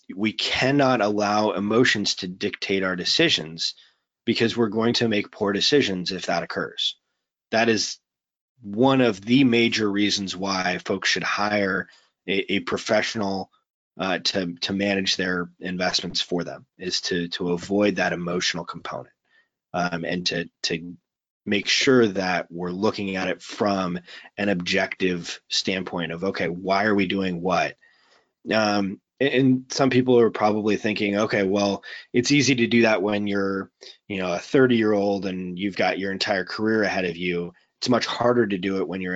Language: English